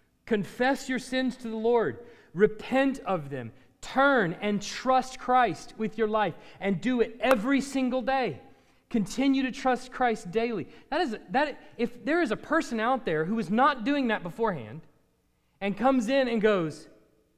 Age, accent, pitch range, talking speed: 30-49, American, 195-260 Hz, 155 wpm